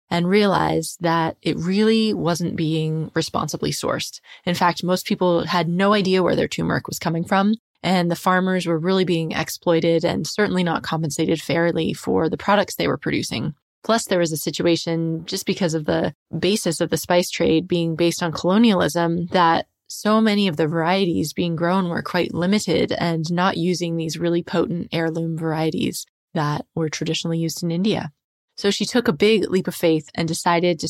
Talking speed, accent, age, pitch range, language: 185 wpm, American, 20-39, 165-190 Hz, English